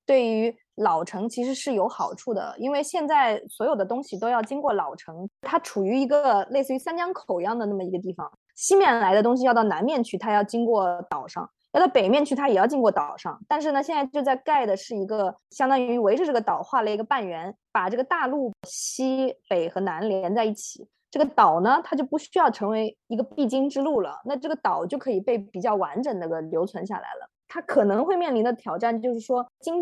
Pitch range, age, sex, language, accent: 200-275 Hz, 20-39, female, Chinese, native